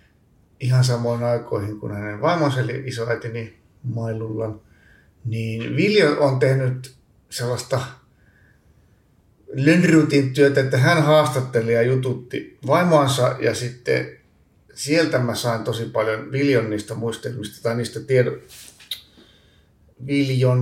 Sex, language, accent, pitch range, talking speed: male, Finnish, native, 110-135 Hz, 100 wpm